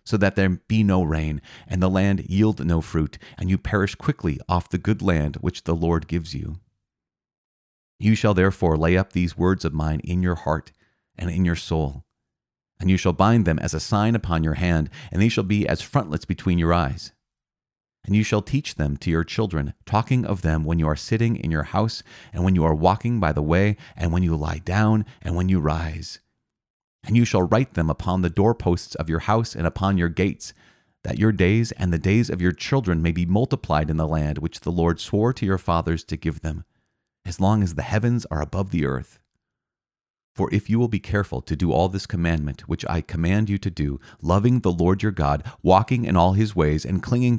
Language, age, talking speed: English, 30-49, 220 wpm